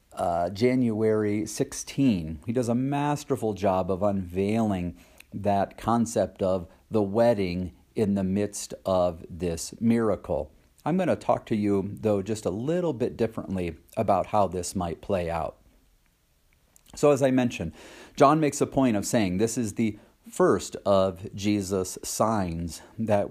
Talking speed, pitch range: 145 wpm, 95-125 Hz